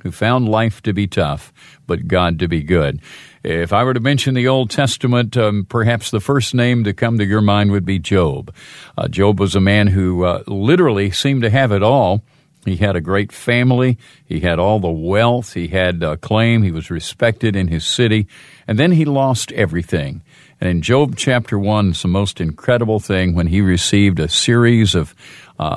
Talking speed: 200 wpm